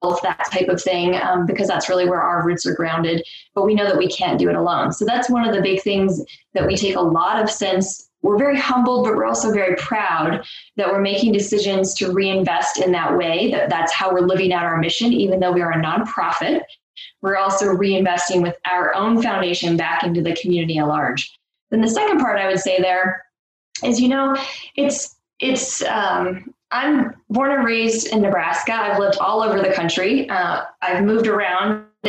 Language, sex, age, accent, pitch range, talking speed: English, female, 20-39, American, 180-220 Hz, 205 wpm